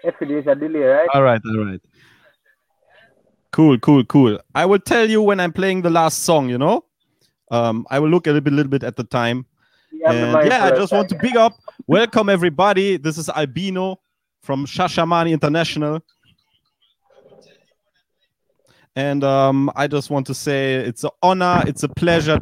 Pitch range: 145-195 Hz